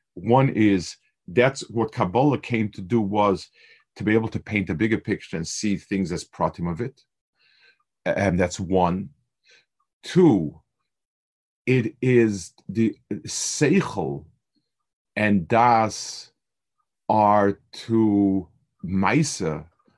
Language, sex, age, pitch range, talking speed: English, male, 40-59, 95-120 Hz, 110 wpm